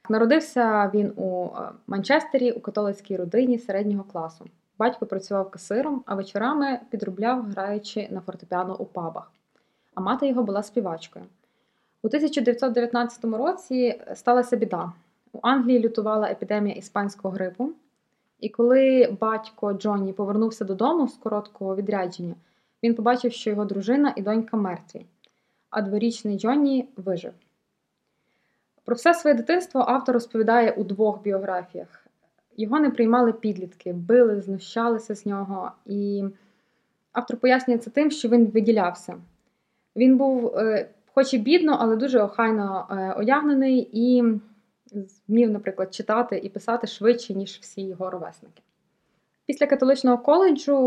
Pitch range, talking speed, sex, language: 200-250 Hz, 125 wpm, female, Ukrainian